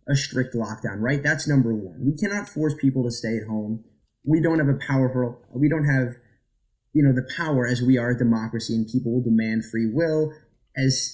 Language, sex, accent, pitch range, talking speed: English, male, American, 120-150 Hz, 210 wpm